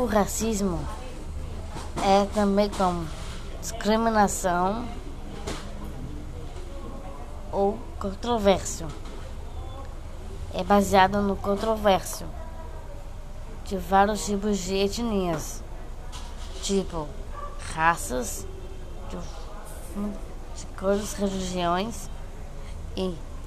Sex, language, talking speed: female, Portuguese, 60 wpm